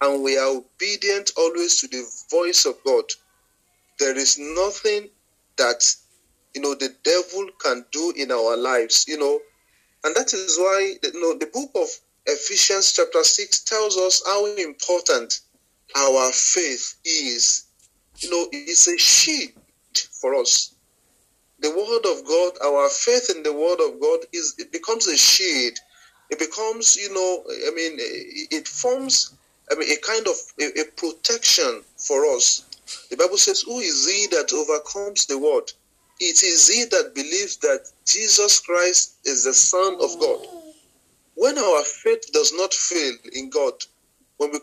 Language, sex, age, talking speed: English, male, 40-59, 160 wpm